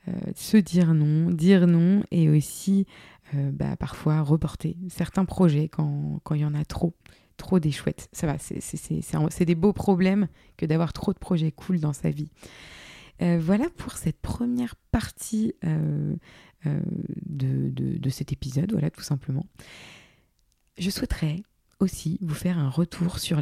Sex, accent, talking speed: female, French, 170 wpm